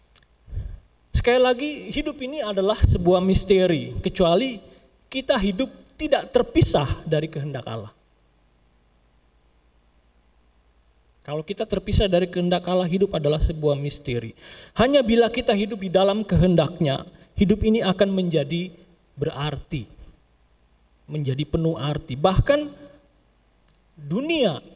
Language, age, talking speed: Indonesian, 30-49, 100 wpm